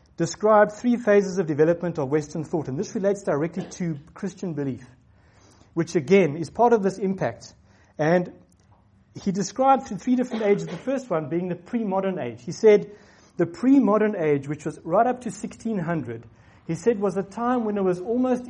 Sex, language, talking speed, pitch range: male, English, 180 wpm, 145-205 Hz